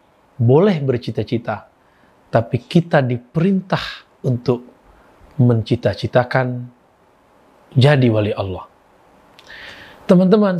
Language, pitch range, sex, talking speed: Indonesian, 120-155 Hz, male, 60 wpm